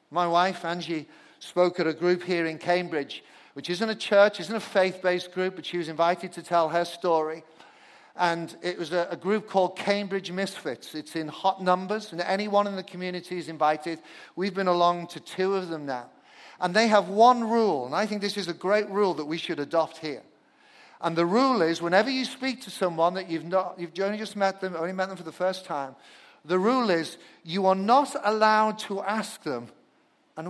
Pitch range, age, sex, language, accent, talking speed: 170-210 Hz, 50-69, male, English, British, 210 wpm